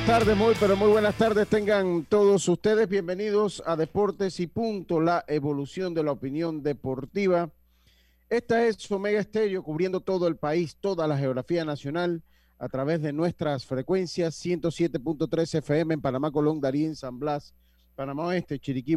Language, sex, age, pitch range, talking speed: Spanish, male, 40-59, 130-175 Hz, 155 wpm